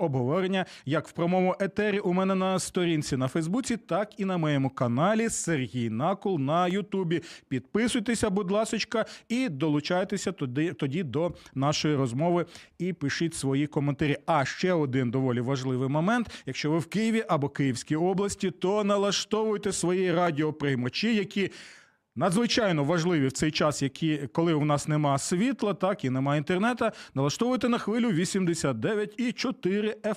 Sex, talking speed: male, 140 wpm